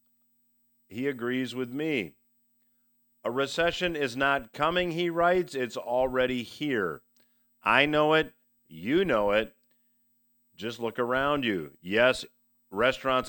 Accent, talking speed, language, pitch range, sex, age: American, 115 wpm, English, 115-145 Hz, male, 50-69